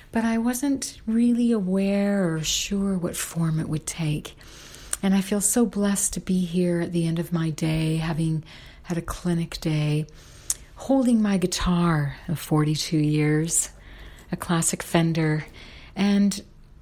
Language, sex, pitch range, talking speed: English, female, 145-175 Hz, 145 wpm